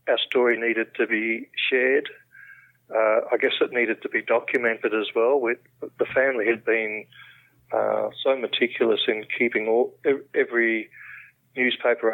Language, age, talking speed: English, 40-59, 145 wpm